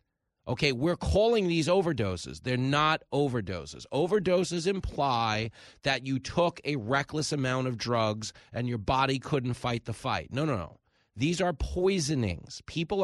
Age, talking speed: 40-59, 145 wpm